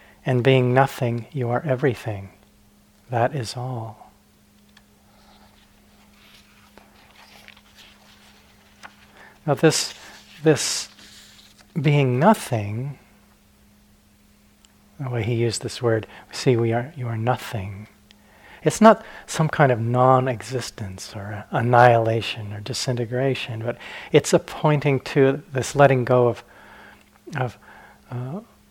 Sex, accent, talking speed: male, American, 100 wpm